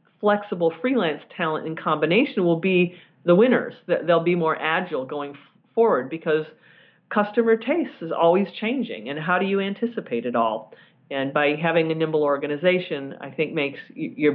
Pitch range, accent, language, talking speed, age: 145-185 Hz, American, English, 160 wpm, 40-59